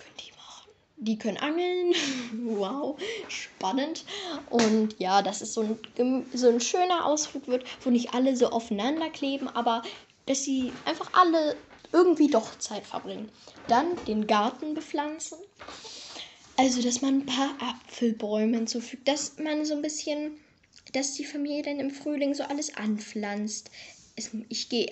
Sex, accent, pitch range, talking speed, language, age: female, German, 225-285 Hz, 140 wpm, German, 10-29